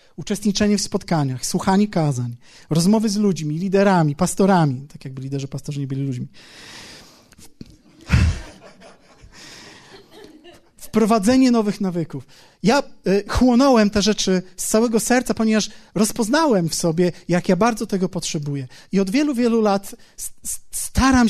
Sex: male